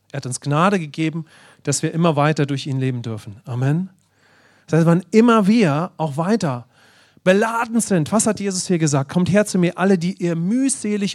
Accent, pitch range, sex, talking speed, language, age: German, 130-180 Hz, male, 195 wpm, English, 40-59